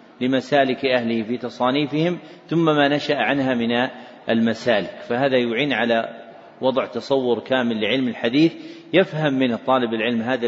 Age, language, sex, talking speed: 40-59, Arabic, male, 130 wpm